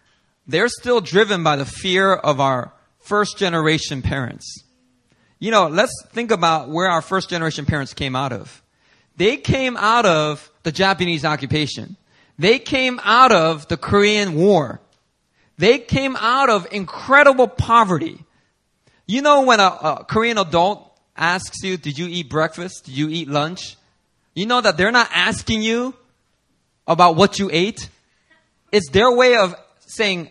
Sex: male